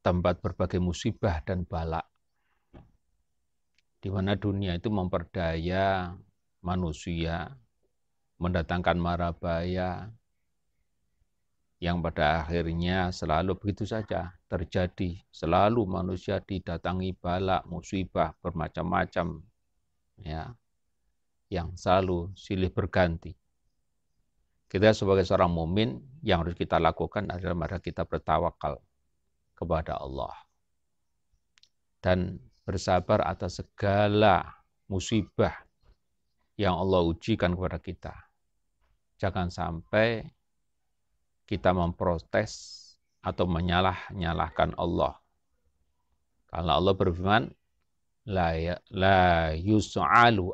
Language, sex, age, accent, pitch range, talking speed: Indonesian, male, 40-59, native, 80-95 Hz, 80 wpm